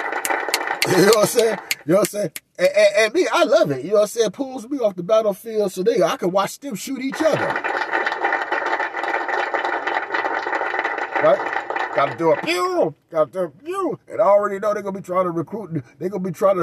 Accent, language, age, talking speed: American, English, 30-49, 225 wpm